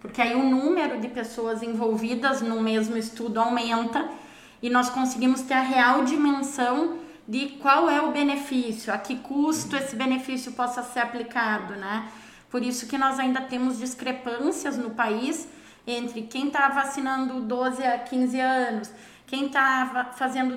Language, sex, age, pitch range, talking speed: Portuguese, female, 20-39, 235-275 Hz, 150 wpm